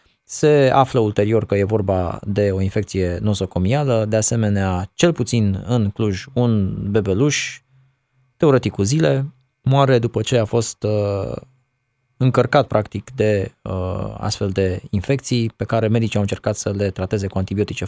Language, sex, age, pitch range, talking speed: Romanian, male, 20-39, 100-130 Hz, 150 wpm